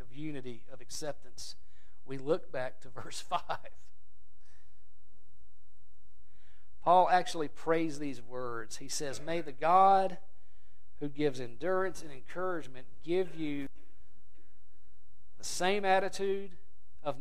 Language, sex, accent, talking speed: English, male, American, 105 wpm